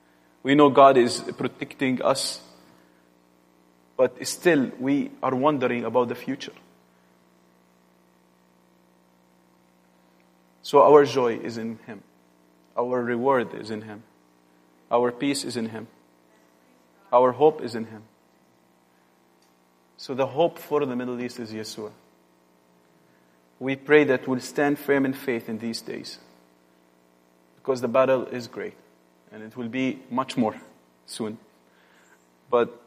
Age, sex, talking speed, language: 30-49, male, 125 wpm, English